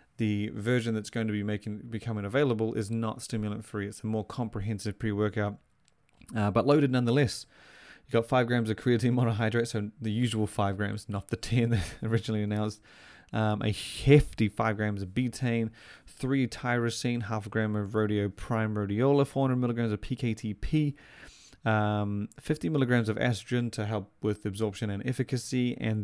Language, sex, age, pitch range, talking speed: English, male, 20-39, 105-120 Hz, 160 wpm